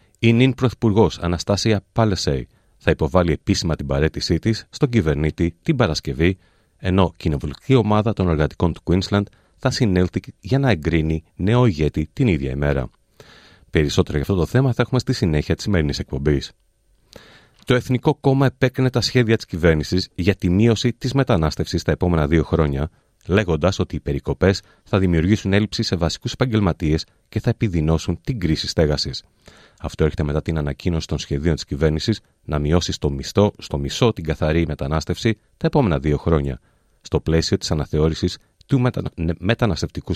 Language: Greek